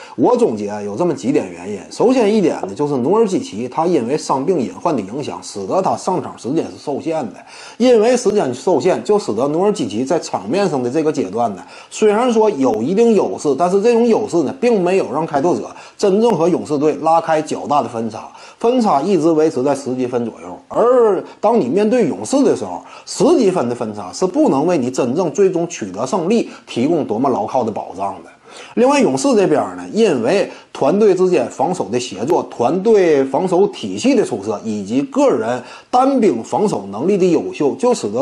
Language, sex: Chinese, male